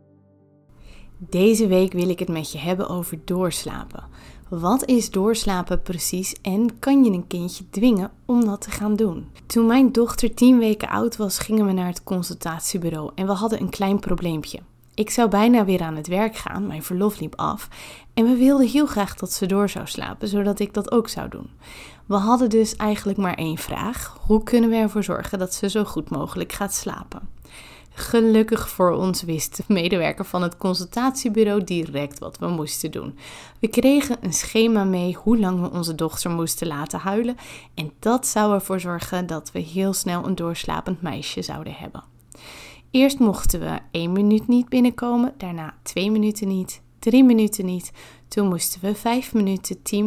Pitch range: 175-220 Hz